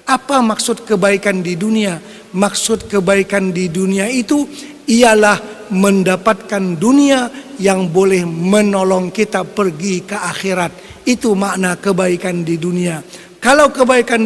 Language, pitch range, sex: Malay, 200-245 Hz, male